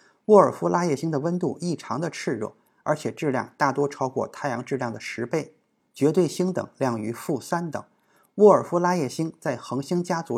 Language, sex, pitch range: Chinese, male, 125-170 Hz